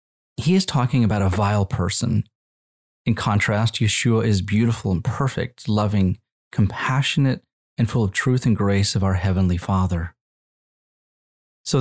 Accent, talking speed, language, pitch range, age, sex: American, 135 wpm, English, 95-120 Hz, 30-49, male